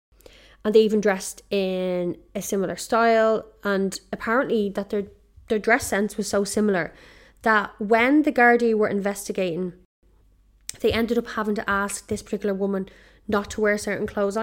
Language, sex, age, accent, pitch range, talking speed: English, female, 20-39, Irish, 195-225 Hz, 160 wpm